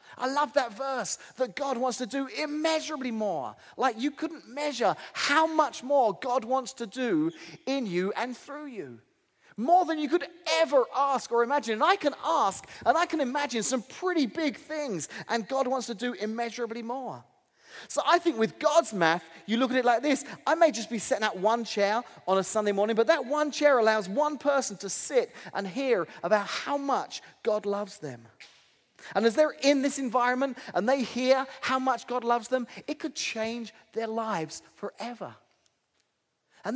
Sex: male